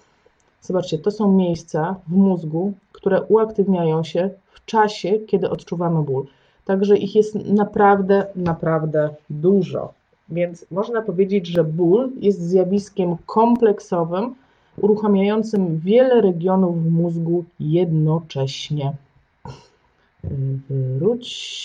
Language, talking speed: Polish, 95 wpm